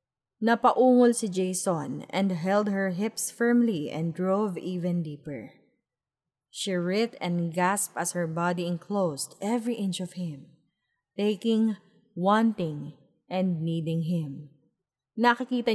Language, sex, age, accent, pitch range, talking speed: Filipino, female, 20-39, native, 165-215 Hz, 115 wpm